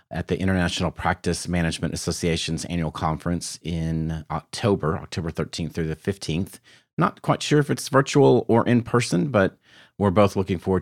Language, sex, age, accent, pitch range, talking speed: English, male, 40-59, American, 85-115 Hz, 155 wpm